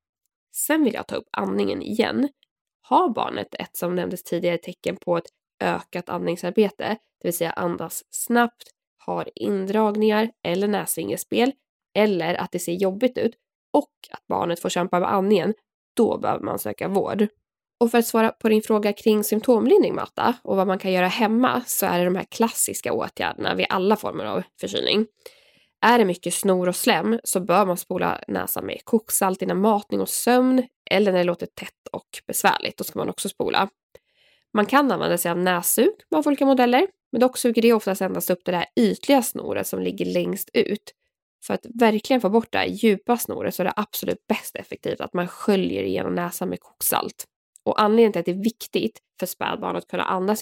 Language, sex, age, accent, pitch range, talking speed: Swedish, female, 10-29, native, 180-240 Hz, 190 wpm